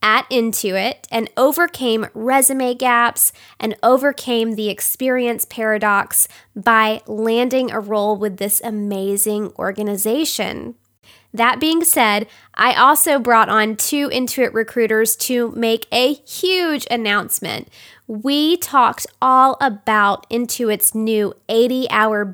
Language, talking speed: English, 110 wpm